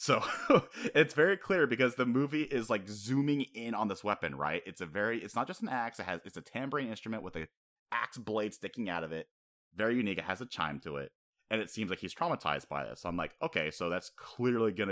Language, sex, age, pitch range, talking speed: English, male, 30-49, 80-110 Hz, 245 wpm